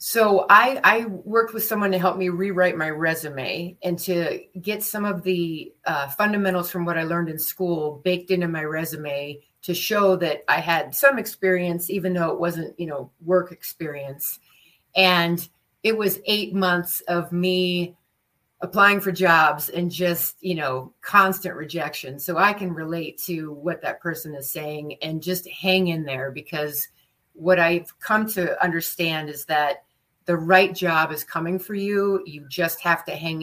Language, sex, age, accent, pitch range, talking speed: English, female, 30-49, American, 160-185 Hz, 170 wpm